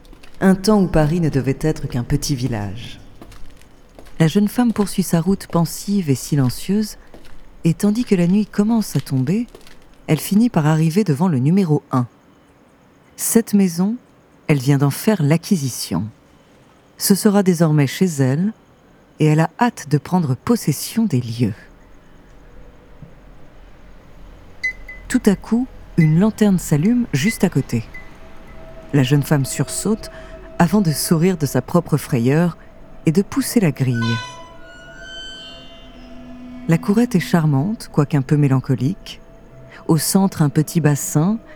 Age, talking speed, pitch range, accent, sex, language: 40-59, 135 wpm, 135-195 Hz, French, female, French